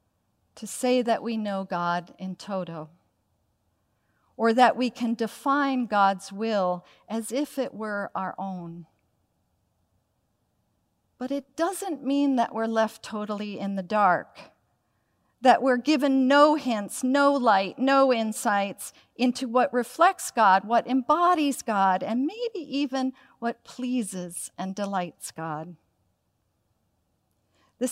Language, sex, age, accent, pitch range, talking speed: English, female, 50-69, American, 170-255 Hz, 125 wpm